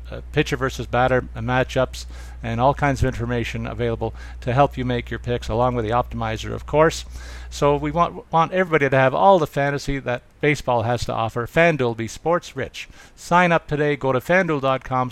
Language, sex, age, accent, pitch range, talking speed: English, male, 50-69, American, 120-150 Hz, 195 wpm